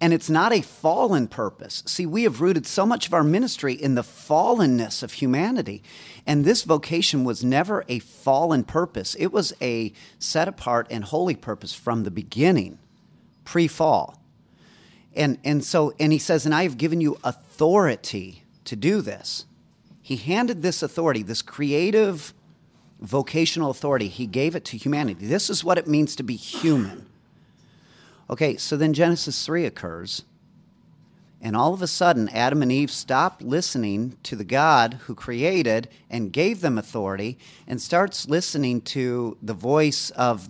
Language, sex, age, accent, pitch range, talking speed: English, male, 40-59, American, 115-165 Hz, 160 wpm